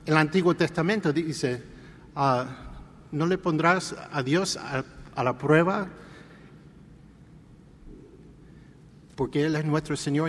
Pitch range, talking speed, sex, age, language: 140-170 Hz, 110 wpm, male, 50-69, English